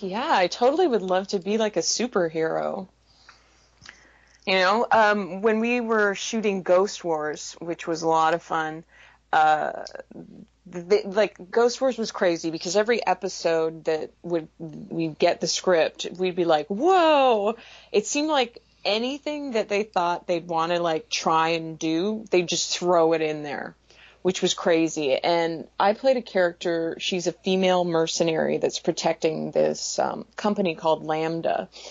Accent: American